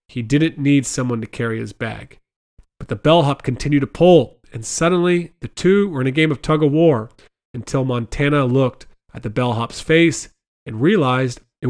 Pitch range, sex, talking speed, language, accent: 120-150 Hz, male, 180 wpm, English, American